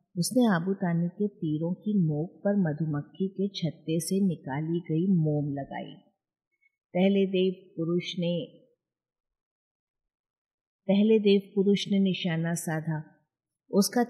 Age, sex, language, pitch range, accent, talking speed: 50-69, female, Hindi, 165-215 Hz, native, 115 wpm